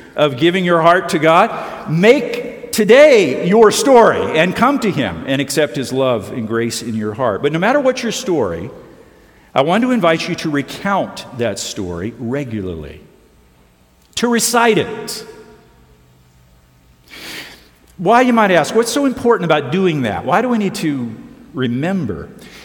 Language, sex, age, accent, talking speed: English, male, 50-69, American, 155 wpm